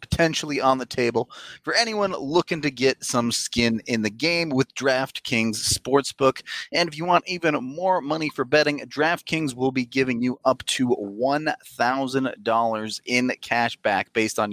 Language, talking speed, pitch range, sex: English, 170 wpm, 110-150 Hz, male